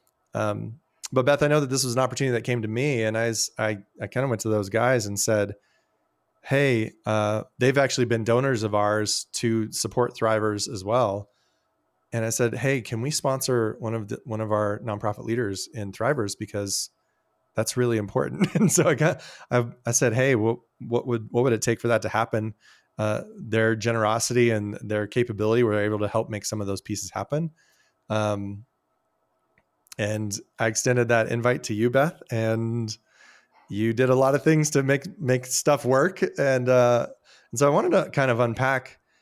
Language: English